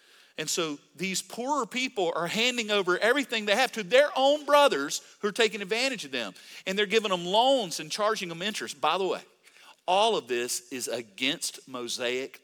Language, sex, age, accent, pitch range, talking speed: English, male, 40-59, American, 170-245 Hz, 190 wpm